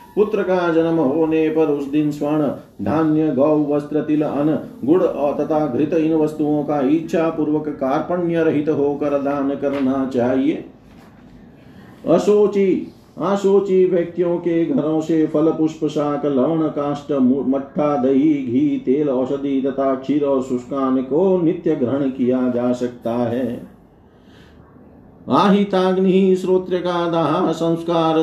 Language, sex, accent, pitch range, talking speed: Hindi, male, native, 135-165 Hz, 125 wpm